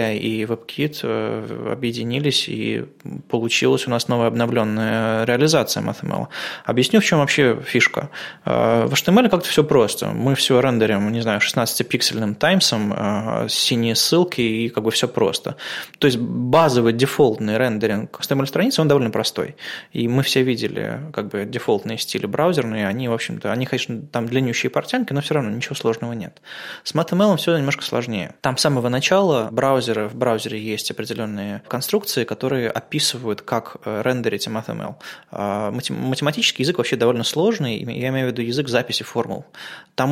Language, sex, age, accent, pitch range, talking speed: Russian, male, 20-39, native, 115-140 Hz, 150 wpm